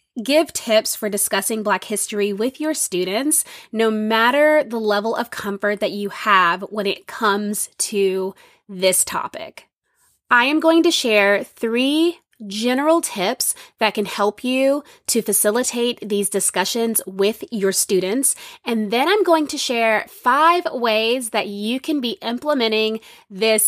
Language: English